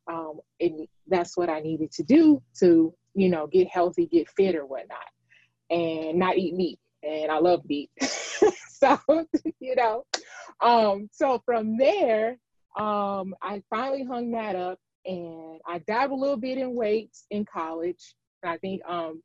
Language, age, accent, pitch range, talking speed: English, 20-39, American, 165-220 Hz, 160 wpm